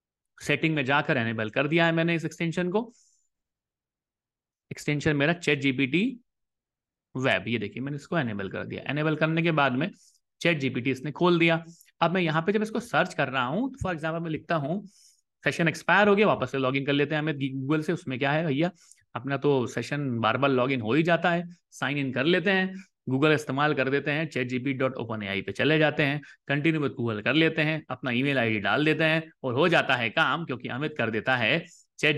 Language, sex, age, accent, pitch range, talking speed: Hindi, male, 30-49, native, 130-165 Hz, 220 wpm